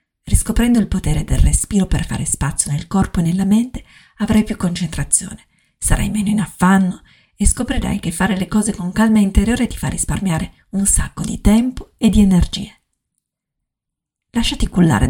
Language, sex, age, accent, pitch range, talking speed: Italian, female, 40-59, native, 170-220 Hz, 165 wpm